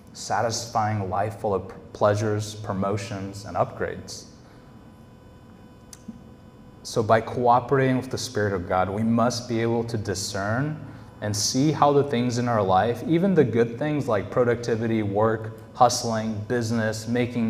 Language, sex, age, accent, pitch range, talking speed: English, male, 20-39, American, 105-125 Hz, 135 wpm